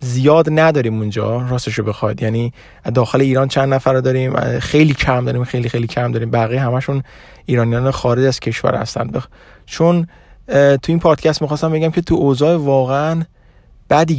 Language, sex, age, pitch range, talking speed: Persian, male, 30-49, 120-145 Hz, 155 wpm